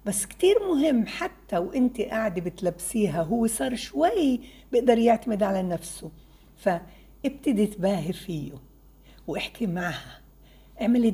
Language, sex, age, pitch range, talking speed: Arabic, female, 60-79, 170-255 Hz, 110 wpm